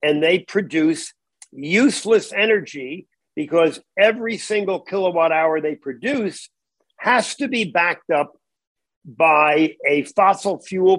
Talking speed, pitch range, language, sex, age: 115 wpm, 160-220 Hz, English, male, 50-69